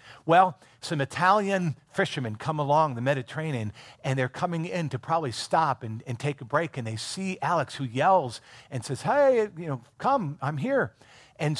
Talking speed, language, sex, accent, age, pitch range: 180 wpm, English, male, American, 50-69, 120-150 Hz